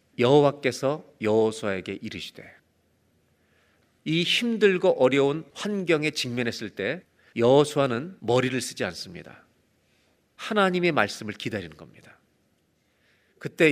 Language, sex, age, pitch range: Korean, male, 40-59, 110-155 Hz